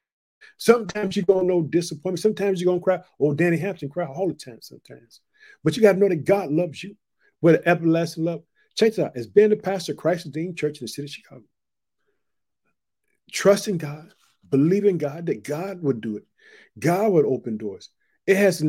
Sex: male